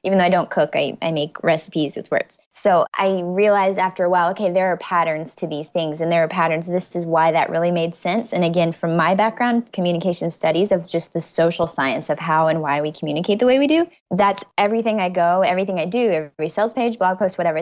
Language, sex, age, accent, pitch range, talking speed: English, female, 10-29, American, 165-210 Hz, 240 wpm